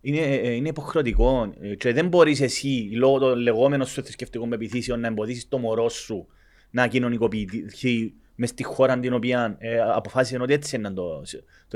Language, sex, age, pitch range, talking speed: Greek, male, 30-49, 105-145 Hz, 165 wpm